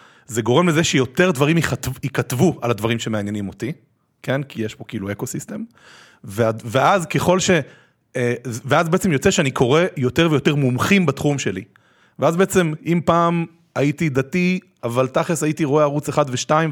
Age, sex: 30-49, male